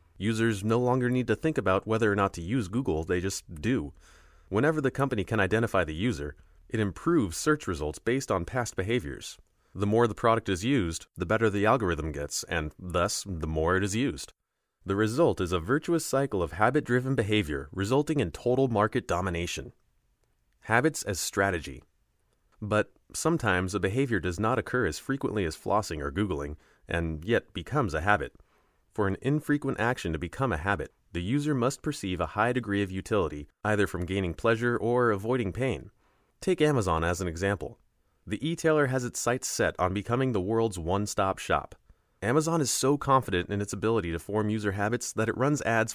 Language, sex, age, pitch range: English, male, 30-49, 90-125 Hz